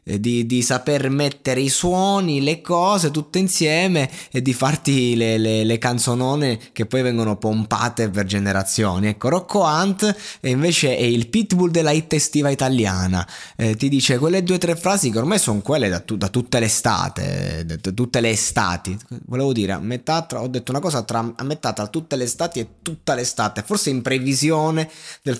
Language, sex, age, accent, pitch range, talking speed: Italian, male, 20-39, native, 110-155 Hz, 185 wpm